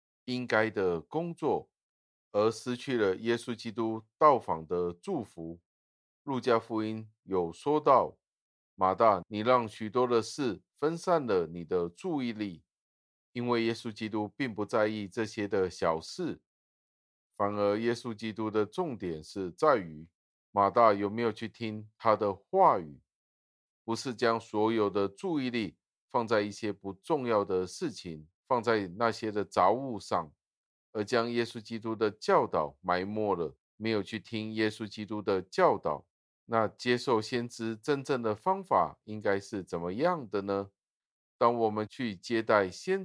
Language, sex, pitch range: Chinese, male, 100-120 Hz